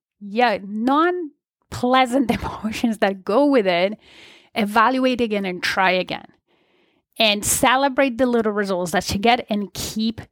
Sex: female